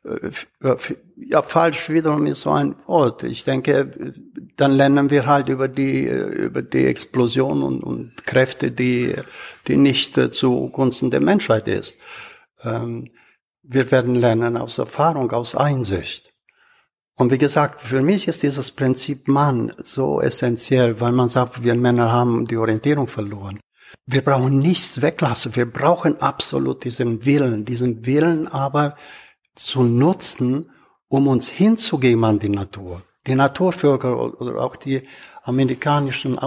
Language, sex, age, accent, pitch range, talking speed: German, male, 60-79, German, 120-145 Hz, 135 wpm